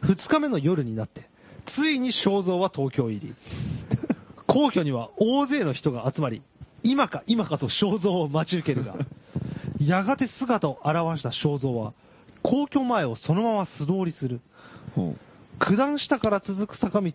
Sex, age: male, 40-59